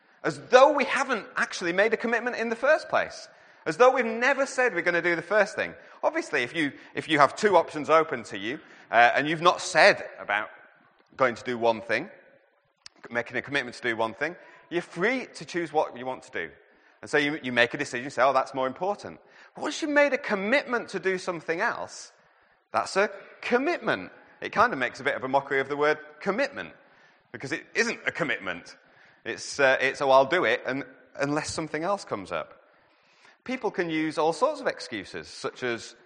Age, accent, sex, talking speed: 30-49, British, male, 215 wpm